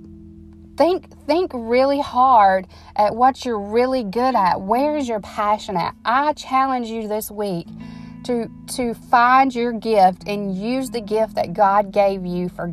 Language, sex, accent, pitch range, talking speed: English, female, American, 175-210 Hz, 160 wpm